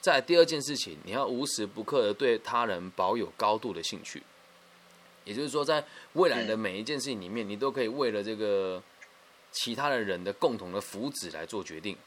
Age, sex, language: 20-39, male, Chinese